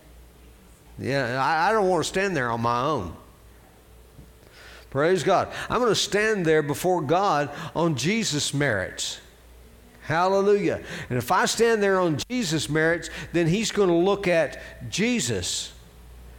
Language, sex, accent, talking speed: English, male, American, 140 wpm